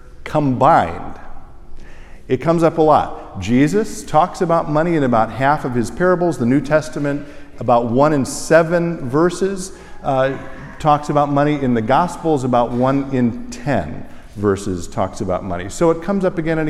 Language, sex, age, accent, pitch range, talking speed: English, male, 50-69, American, 135-180 Hz, 160 wpm